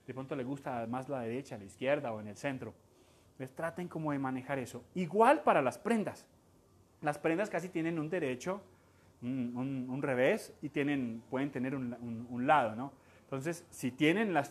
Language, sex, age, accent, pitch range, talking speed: Spanish, male, 30-49, Colombian, 125-165 Hz, 190 wpm